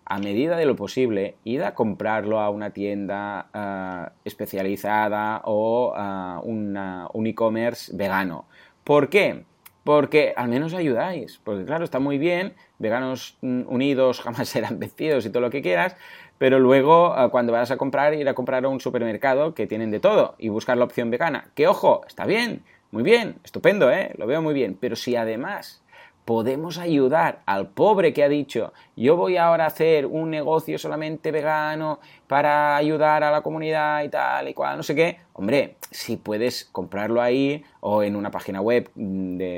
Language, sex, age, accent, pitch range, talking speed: Spanish, male, 30-49, Spanish, 105-145 Hz, 175 wpm